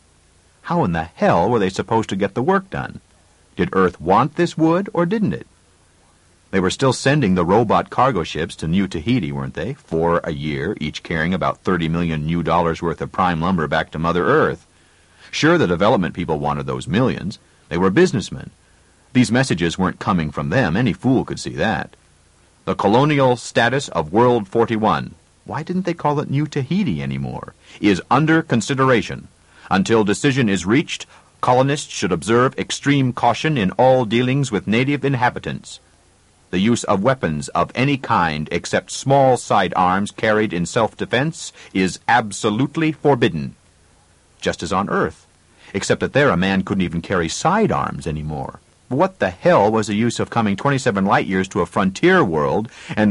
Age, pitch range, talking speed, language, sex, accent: 50-69, 85-135 Hz, 170 wpm, English, male, American